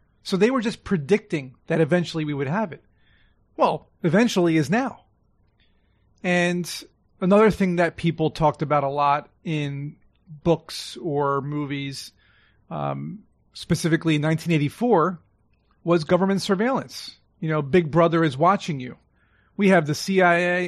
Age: 30-49